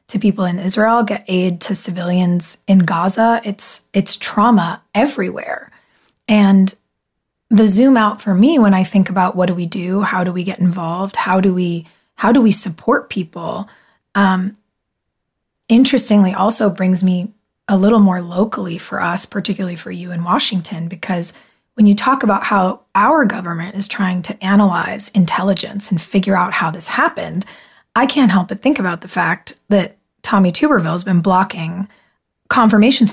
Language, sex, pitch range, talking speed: English, female, 185-215 Hz, 165 wpm